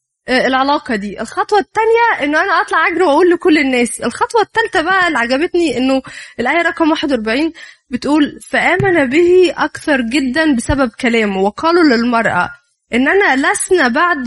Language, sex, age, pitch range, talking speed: Arabic, female, 20-39, 245-350 Hz, 135 wpm